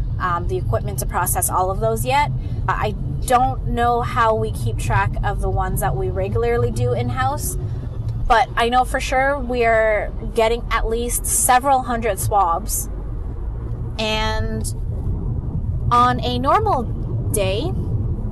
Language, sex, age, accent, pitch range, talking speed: English, female, 20-39, American, 110-125 Hz, 140 wpm